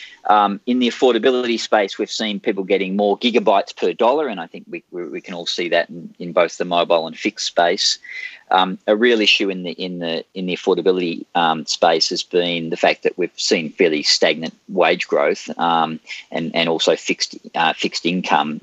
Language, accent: English, Australian